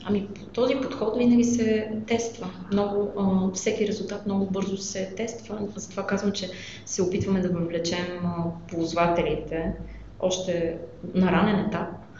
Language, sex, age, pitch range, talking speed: Bulgarian, female, 20-39, 180-210 Hz, 130 wpm